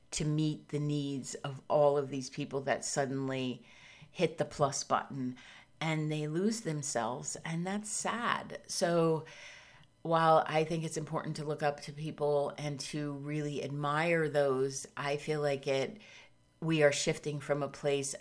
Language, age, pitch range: English, 30-49, 140-155 Hz